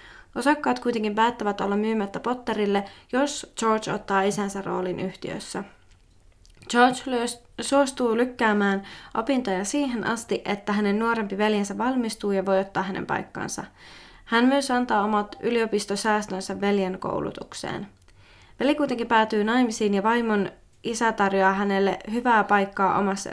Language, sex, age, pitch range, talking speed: Finnish, female, 20-39, 195-235 Hz, 120 wpm